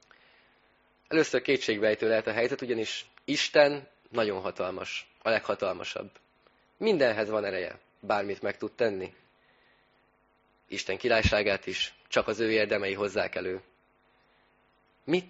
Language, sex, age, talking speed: Hungarian, male, 20-39, 110 wpm